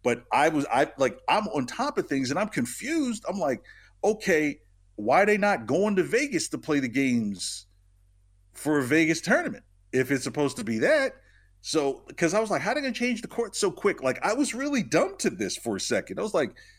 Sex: male